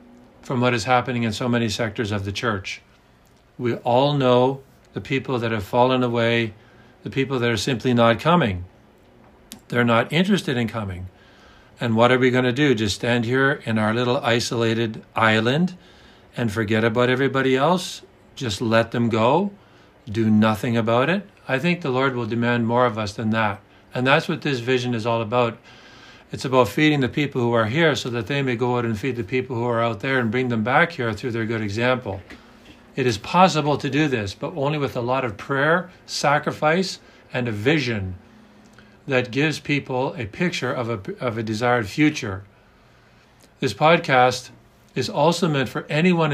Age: 50-69